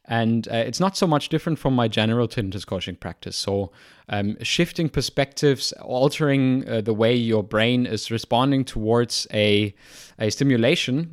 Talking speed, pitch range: 155 wpm, 110-140 Hz